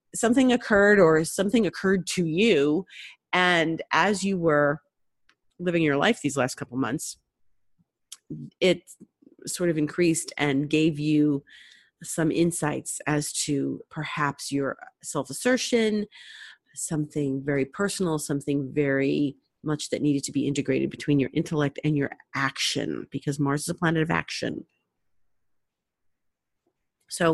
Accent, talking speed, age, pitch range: American, 125 wpm, 30-49, 150-190 Hz